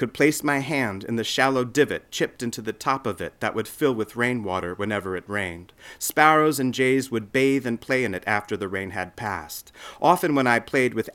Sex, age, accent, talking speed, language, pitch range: male, 40-59, American, 220 wpm, English, 105-140 Hz